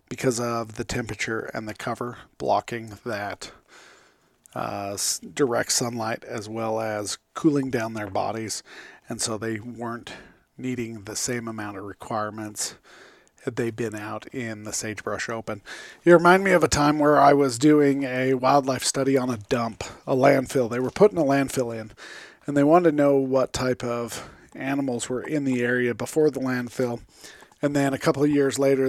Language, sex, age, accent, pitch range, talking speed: English, male, 40-59, American, 110-135 Hz, 175 wpm